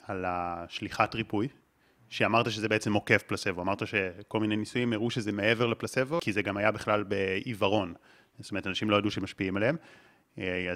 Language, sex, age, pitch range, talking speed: Hebrew, male, 30-49, 100-125 Hz, 165 wpm